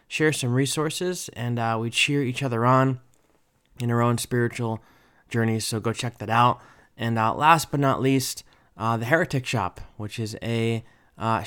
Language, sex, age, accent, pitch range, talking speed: English, male, 20-39, American, 105-135 Hz, 180 wpm